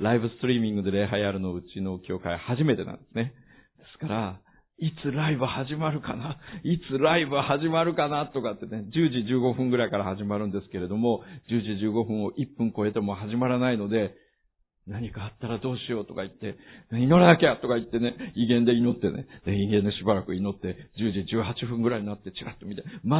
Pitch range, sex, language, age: 95-125 Hz, male, Japanese, 50-69